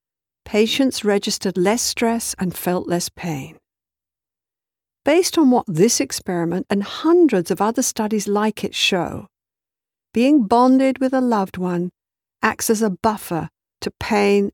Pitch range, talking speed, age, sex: 180-235 Hz, 135 wpm, 60-79, female